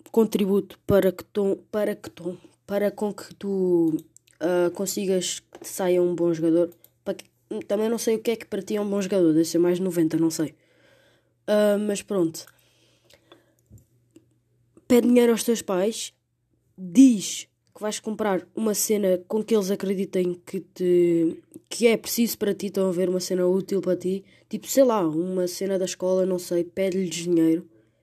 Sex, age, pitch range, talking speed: female, 20-39, 170-210 Hz, 180 wpm